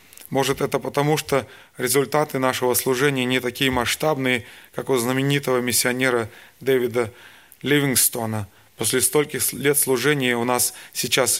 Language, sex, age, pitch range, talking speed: Russian, male, 20-39, 125-145 Hz, 120 wpm